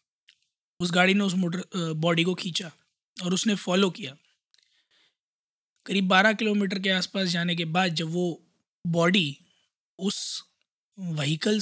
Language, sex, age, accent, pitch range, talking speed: Hindi, male, 20-39, native, 175-215 Hz, 130 wpm